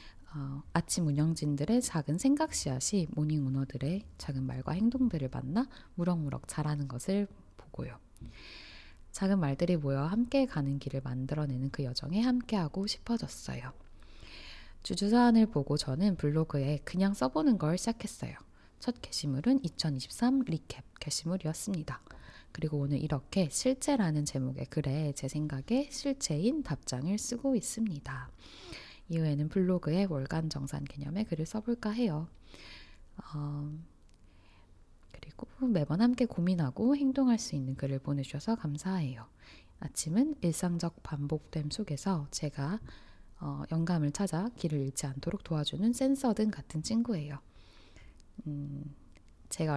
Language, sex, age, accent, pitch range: Korean, female, 10-29, native, 140-200 Hz